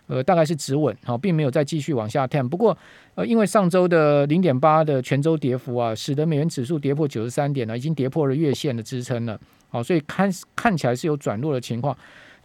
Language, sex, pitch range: Chinese, male, 135-175 Hz